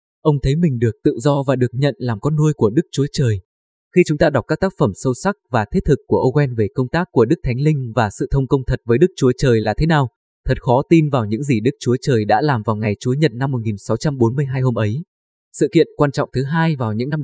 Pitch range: 115-150 Hz